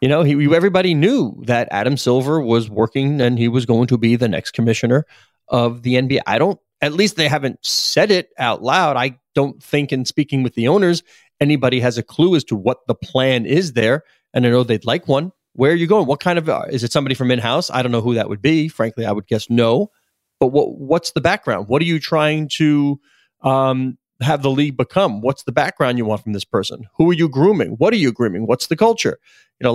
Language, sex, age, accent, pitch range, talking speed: English, male, 30-49, American, 120-150 Hz, 240 wpm